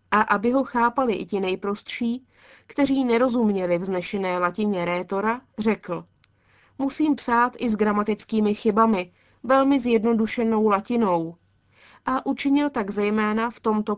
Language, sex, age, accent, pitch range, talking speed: Czech, female, 20-39, native, 195-240 Hz, 120 wpm